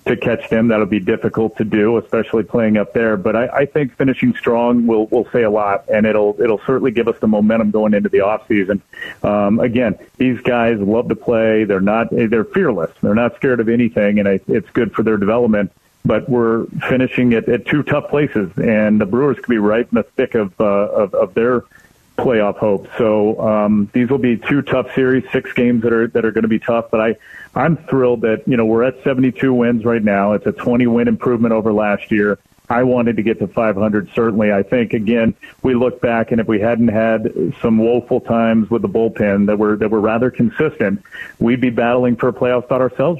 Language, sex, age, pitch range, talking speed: English, male, 40-59, 110-125 Hz, 220 wpm